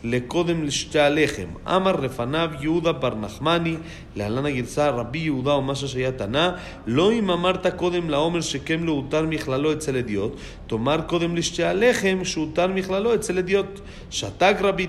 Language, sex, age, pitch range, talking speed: Spanish, male, 40-59, 135-180 Hz, 135 wpm